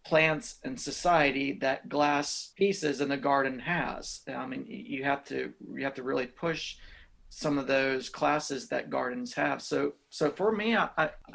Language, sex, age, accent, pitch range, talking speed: English, male, 40-59, American, 135-155 Hz, 175 wpm